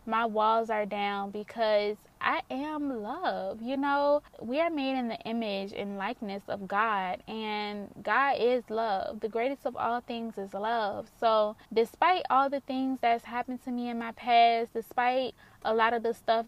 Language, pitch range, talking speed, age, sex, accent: English, 220-275 Hz, 180 wpm, 20-39, female, American